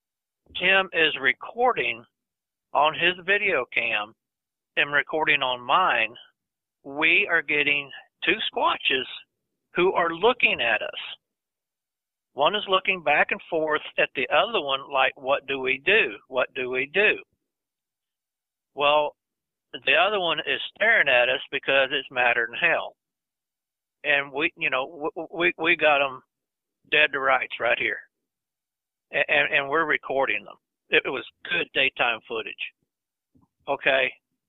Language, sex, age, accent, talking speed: English, male, 60-79, American, 135 wpm